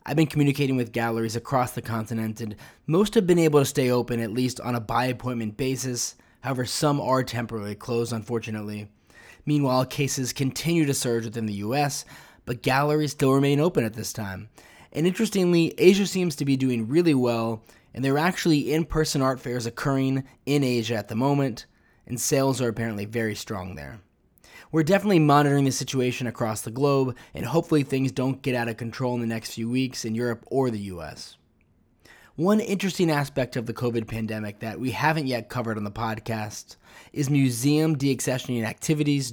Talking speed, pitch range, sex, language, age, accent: 180 wpm, 115-145 Hz, male, English, 20-39, American